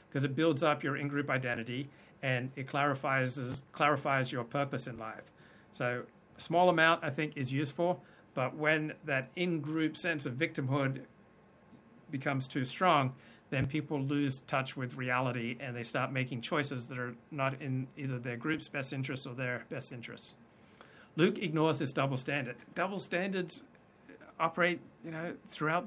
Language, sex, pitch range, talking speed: English, male, 130-160 Hz, 160 wpm